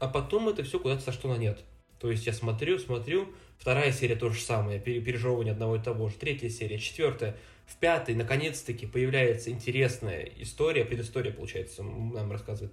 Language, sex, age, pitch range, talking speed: Russian, male, 20-39, 115-135 Hz, 175 wpm